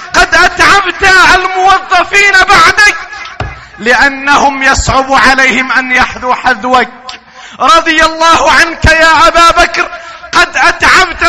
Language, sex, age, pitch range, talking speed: Arabic, male, 30-49, 270-345 Hz, 95 wpm